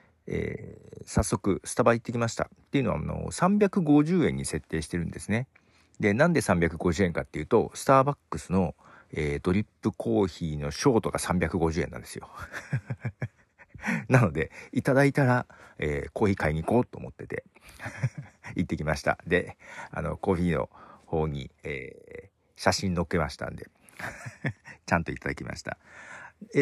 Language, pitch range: Japanese, 80-130 Hz